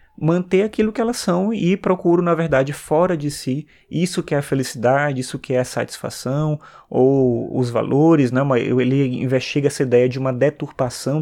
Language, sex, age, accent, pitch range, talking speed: Portuguese, male, 20-39, Brazilian, 130-165 Hz, 175 wpm